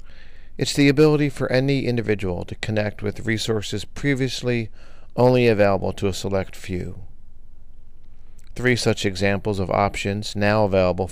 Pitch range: 90-115 Hz